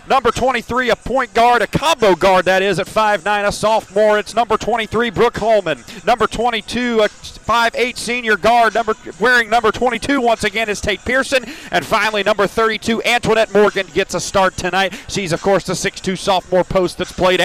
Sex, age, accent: male, 40-59, American